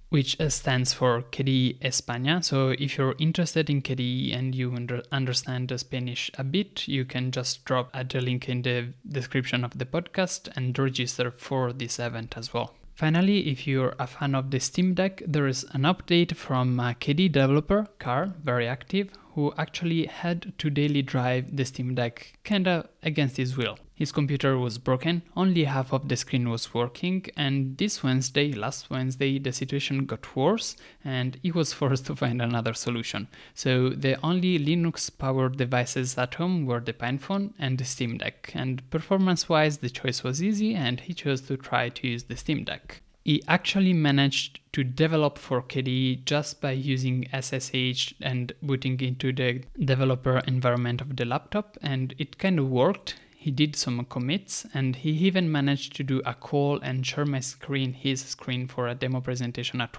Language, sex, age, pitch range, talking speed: English, male, 20-39, 125-150 Hz, 180 wpm